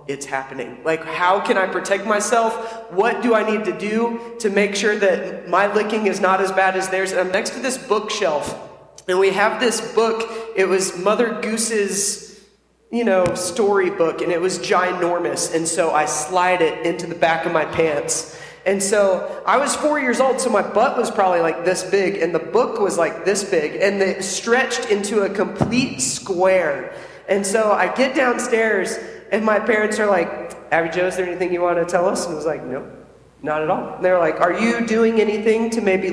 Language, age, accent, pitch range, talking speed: English, 20-39, American, 180-220 Hz, 210 wpm